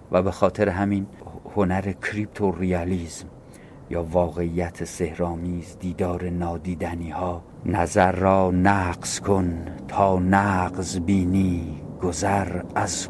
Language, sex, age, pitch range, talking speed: Persian, male, 50-69, 85-95 Hz, 95 wpm